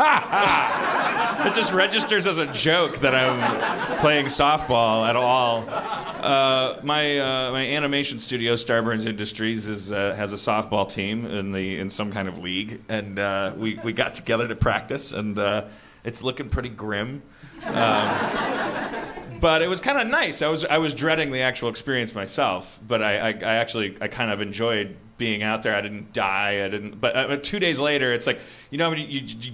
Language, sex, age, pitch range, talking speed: English, male, 30-49, 105-130 Hz, 185 wpm